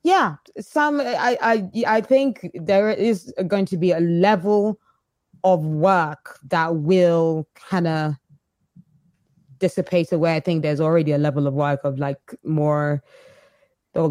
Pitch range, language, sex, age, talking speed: 155-185 Hz, English, female, 20-39, 140 wpm